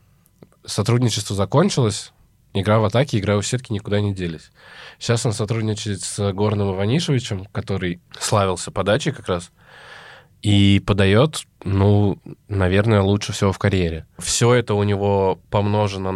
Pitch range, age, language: 95-105 Hz, 20-39, Russian